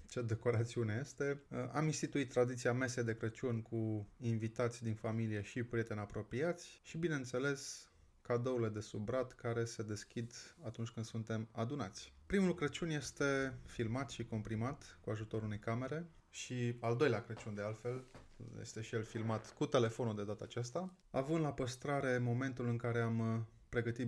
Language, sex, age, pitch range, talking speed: Romanian, male, 20-39, 110-135 Hz, 150 wpm